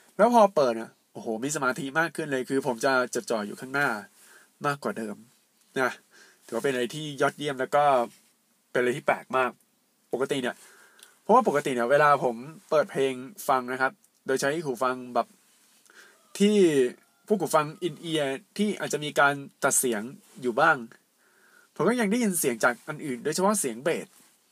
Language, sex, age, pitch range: Thai, male, 20-39, 130-190 Hz